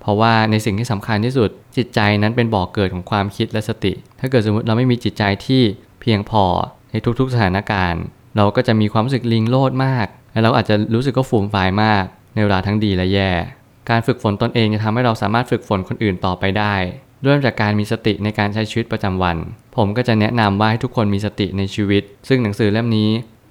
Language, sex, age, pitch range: Thai, male, 20-39, 100-120 Hz